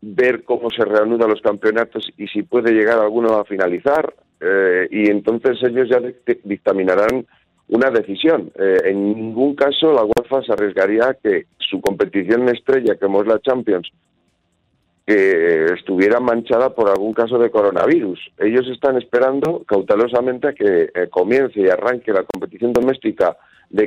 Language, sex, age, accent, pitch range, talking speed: Spanish, male, 50-69, Spanish, 105-140 Hz, 150 wpm